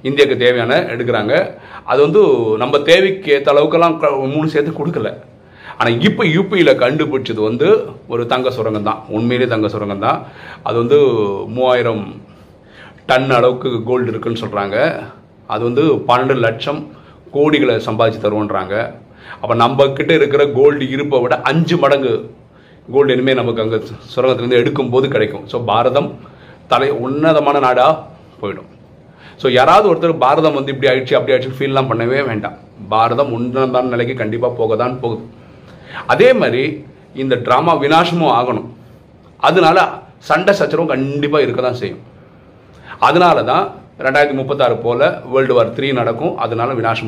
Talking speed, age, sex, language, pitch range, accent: 85 wpm, 40-59, male, Tamil, 115-150 Hz, native